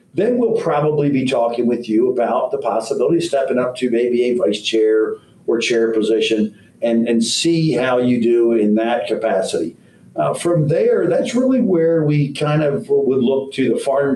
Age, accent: 50-69, American